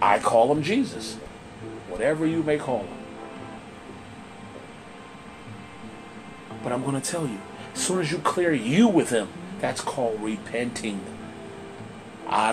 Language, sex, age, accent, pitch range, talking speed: English, male, 30-49, American, 135-180 Hz, 130 wpm